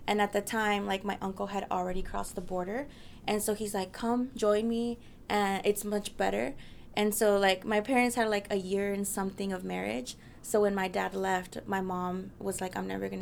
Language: English